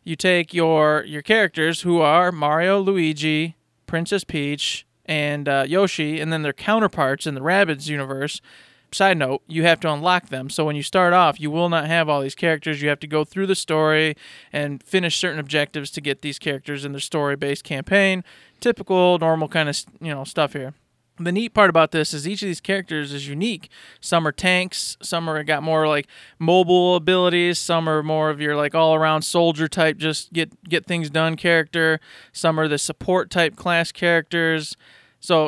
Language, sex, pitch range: English, male, 150-180 Hz